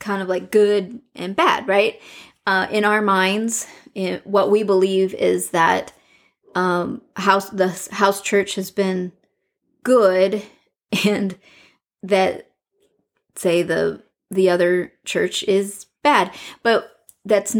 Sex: female